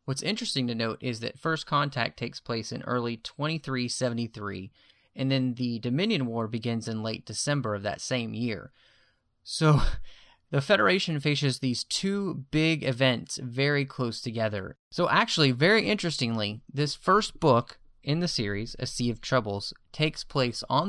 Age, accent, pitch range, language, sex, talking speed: 30-49, American, 110-135 Hz, English, male, 155 wpm